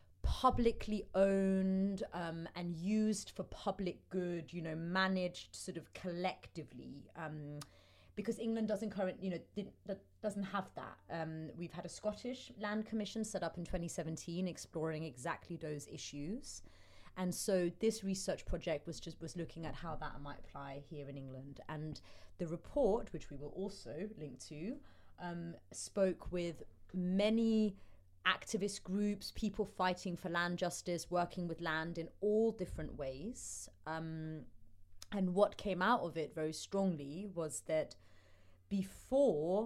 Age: 30-49